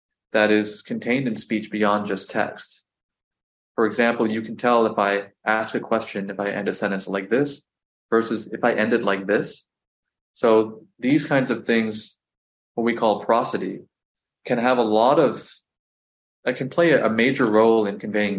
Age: 20-39